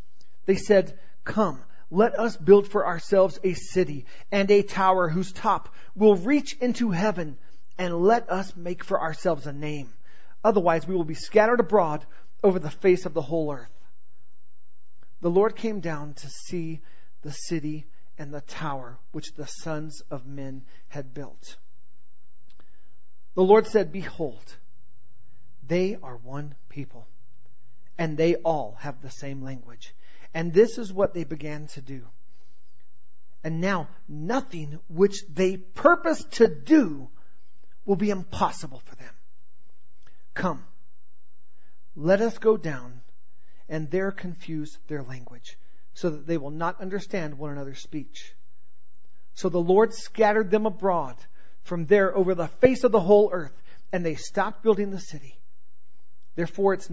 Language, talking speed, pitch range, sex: English, 145 wpm, 125-185 Hz, male